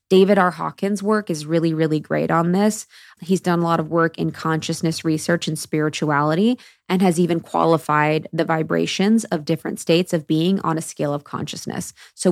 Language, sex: English, female